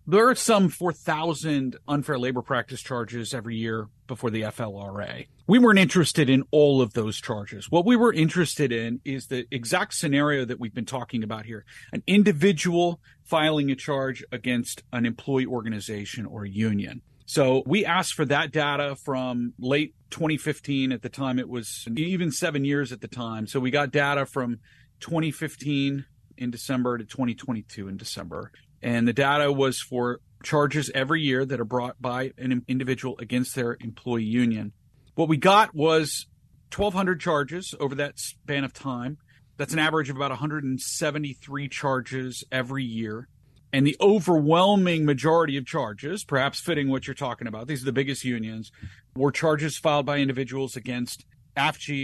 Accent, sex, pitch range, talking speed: American, male, 120-150 Hz, 165 wpm